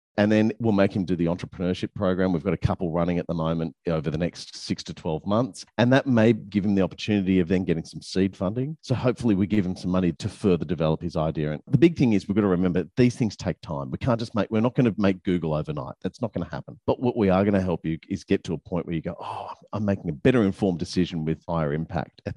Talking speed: 280 wpm